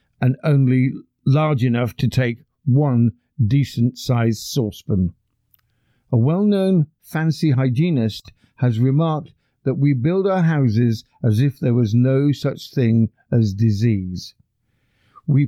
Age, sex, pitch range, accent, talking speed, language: 50-69, male, 115-145 Hz, British, 115 wpm, English